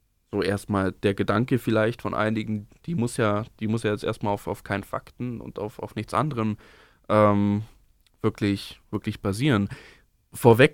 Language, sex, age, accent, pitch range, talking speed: German, male, 20-39, German, 105-120 Hz, 160 wpm